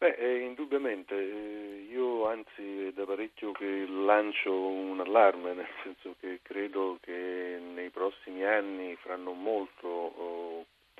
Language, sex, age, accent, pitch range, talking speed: Italian, male, 40-59, native, 85-95 Hz, 130 wpm